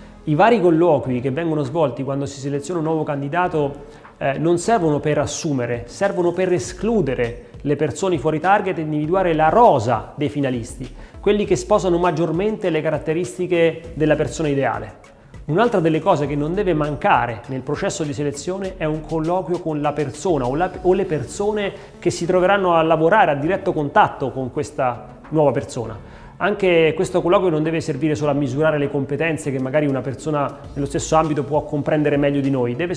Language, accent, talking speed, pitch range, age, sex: Italian, native, 175 wpm, 140-175 Hz, 30-49, male